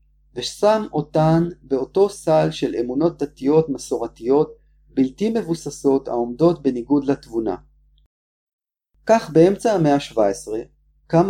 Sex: male